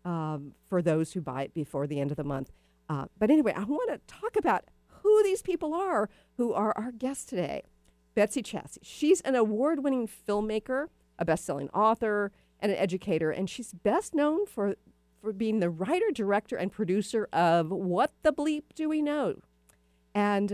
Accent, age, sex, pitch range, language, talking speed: American, 50-69, female, 170-235 Hz, English, 180 wpm